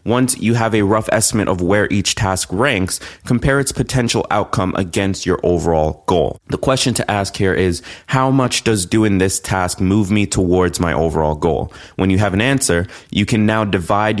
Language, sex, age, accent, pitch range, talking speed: English, male, 20-39, American, 90-110 Hz, 195 wpm